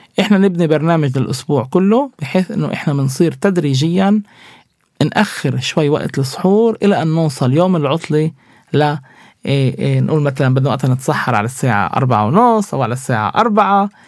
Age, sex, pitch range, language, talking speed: 20-39, male, 135-175 Hz, Arabic, 145 wpm